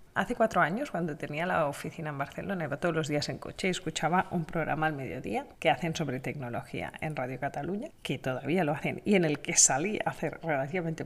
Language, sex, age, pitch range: Spanish, female, 30-49, 165-225 Hz